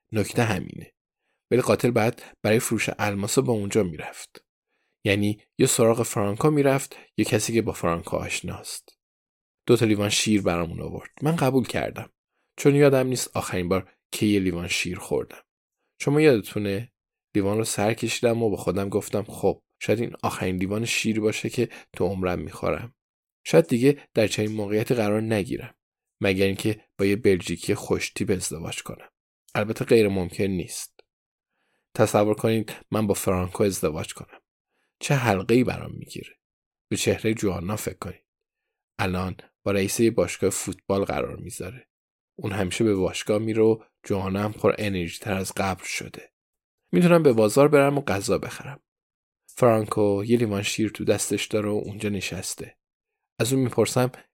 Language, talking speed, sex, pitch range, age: Persian, 150 wpm, male, 100-115 Hz, 20-39